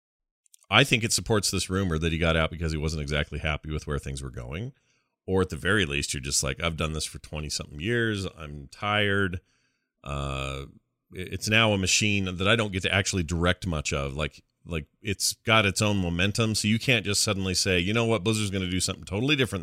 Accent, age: American, 40-59